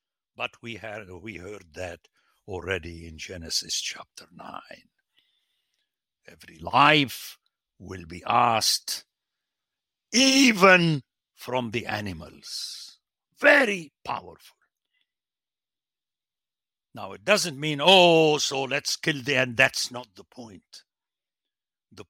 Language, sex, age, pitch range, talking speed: English, male, 60-79, 95-135 Hz, 100 wpm